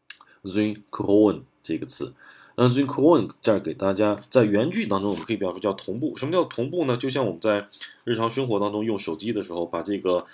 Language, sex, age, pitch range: Chinese, male, 20-39, 90-110 Hz